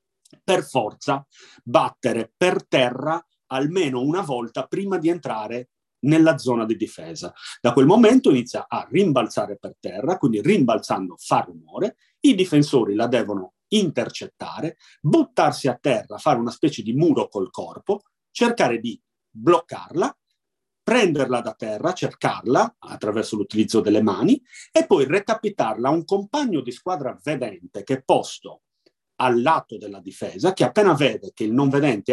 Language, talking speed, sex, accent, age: Italian, 140 wpm, male, native, 40-59